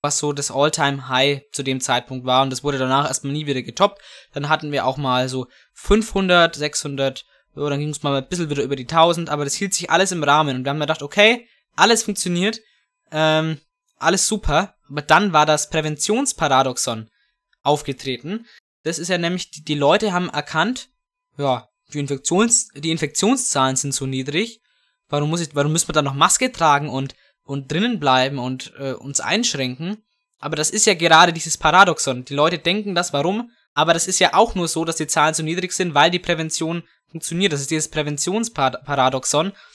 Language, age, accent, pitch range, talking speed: German, 20-39, German, 140-180 Hz, 195 wpm